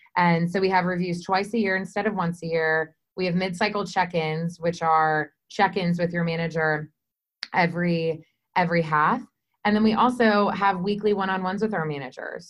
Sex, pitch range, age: female, 170-205 Hz, 20-39